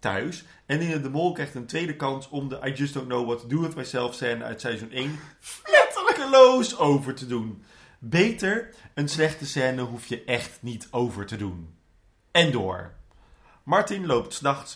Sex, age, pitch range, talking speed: male, 30-49, 100-140 Hz, 185 wpm